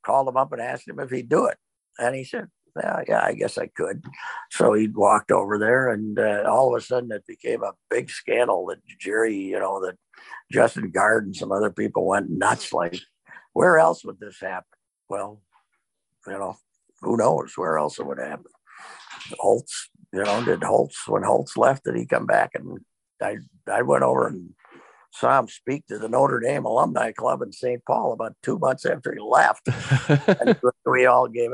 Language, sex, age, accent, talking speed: English, male, 60-79, American, 200 wpm